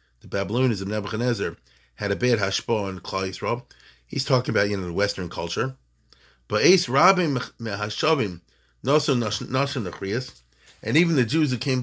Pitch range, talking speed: 100-150 Hz, 145 wpm